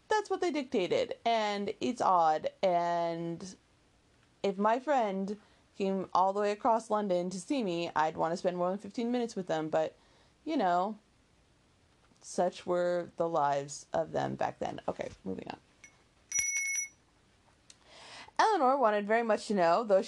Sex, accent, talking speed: female, American, 150 wpm